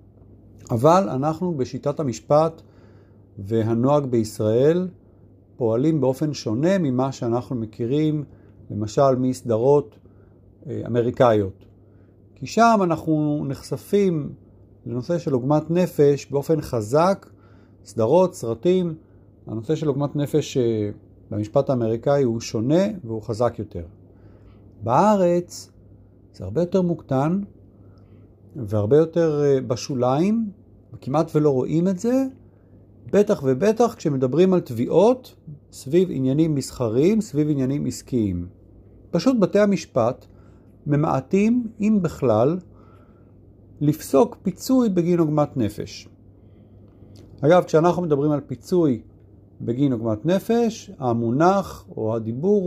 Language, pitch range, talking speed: Hebrew, 105-160 Hz, 95 wpm